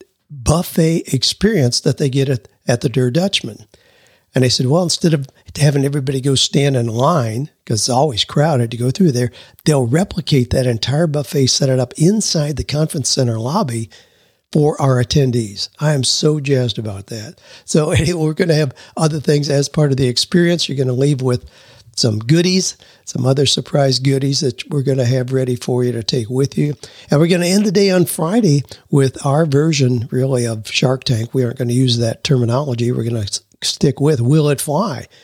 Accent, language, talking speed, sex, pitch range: American, English, 205 wpm, male, 125-155 Hz